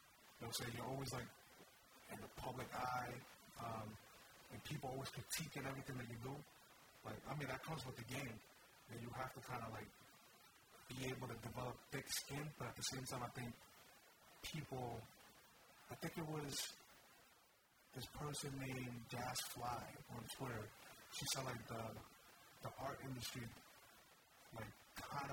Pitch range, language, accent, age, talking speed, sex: 120-135 Hz, English, American, 40-59, 160 wpm, male